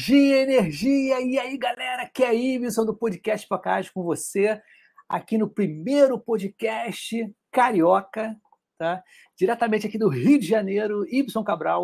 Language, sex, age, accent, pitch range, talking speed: Portuguese, male, 60-79, Brazilian, 180-245 Hz, 140 wpm